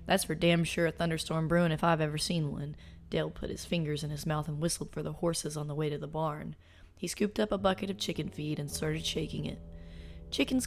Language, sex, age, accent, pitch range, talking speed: English, female, 20-39, American, 155-185 Hz, 240 wpm